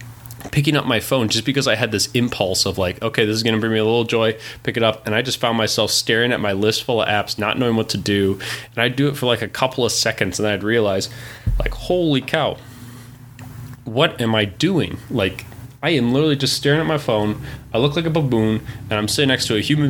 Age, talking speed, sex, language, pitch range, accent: 20-39, 250 wpm, male, English, 110-130 Hz, American